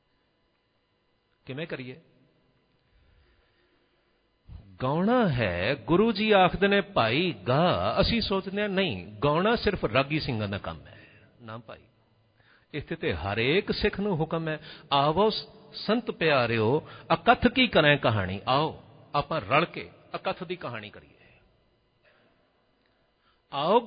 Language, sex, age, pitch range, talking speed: Punjabi, male, 50-69, 115-190 Hz, 115 wpm